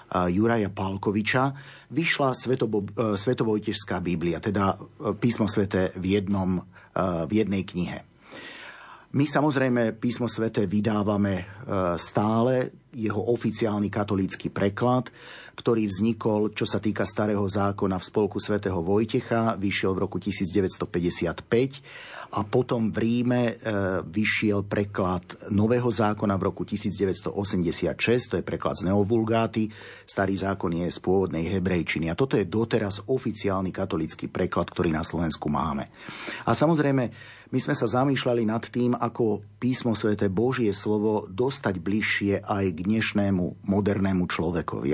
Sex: male